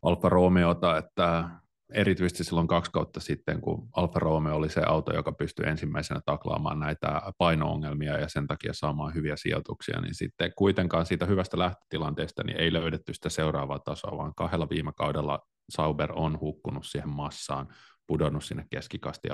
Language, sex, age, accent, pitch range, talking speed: Finnish, male, 30-49, native, 75-90 Hz, 150 wpm